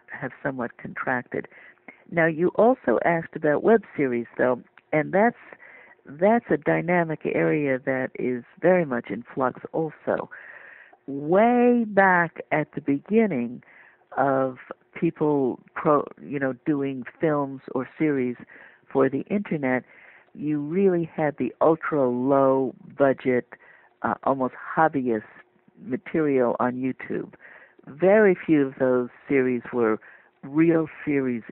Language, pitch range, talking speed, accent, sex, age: English, 130-170 Hz, 120 wpm, American, female, 60-79